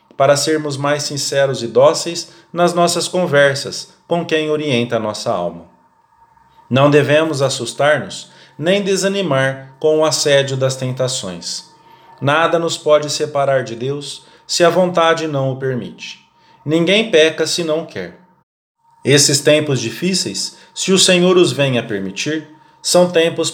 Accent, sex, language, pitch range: Brazilian, male, English, 135-175 Hz